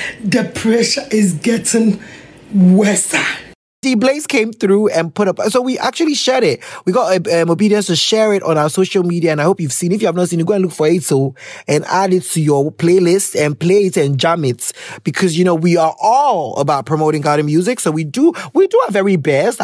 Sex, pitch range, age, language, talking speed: male, 165-230 Hz, 20-39, English, 230 wpm